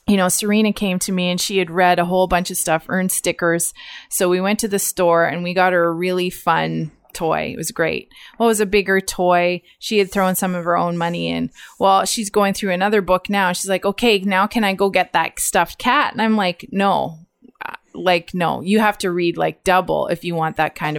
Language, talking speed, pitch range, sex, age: English, 235 wpm, 175-210 Hz, female, 20-39